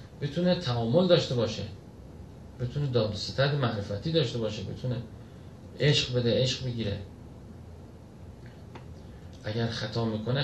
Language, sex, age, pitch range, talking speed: Persian, male, 40-59, 105-140 Hz, 105 wpm